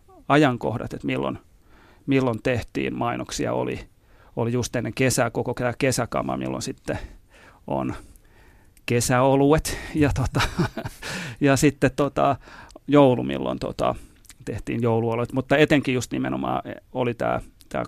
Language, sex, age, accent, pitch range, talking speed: Finnish, male, 40-59, native, 115-135 Hz, 115 wpm